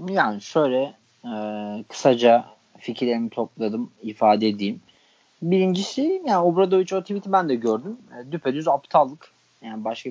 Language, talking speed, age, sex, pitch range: Turkish, 125 wpm, 30-49, male, 105-125 Hz